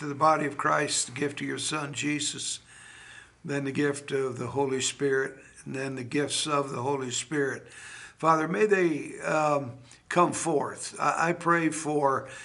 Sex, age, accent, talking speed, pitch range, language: male, 60-79, American, 170 wpm, 145-170 Hz, English